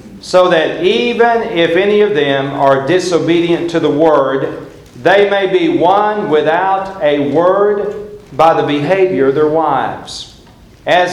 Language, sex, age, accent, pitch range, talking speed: English, male, 50-69, American, 150-195 Hz, 140 wpm